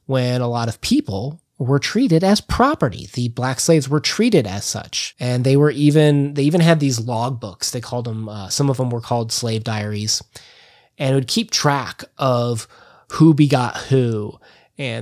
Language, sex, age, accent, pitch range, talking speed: English, male, 20-39, American, 115-145 Hz, 190 wpm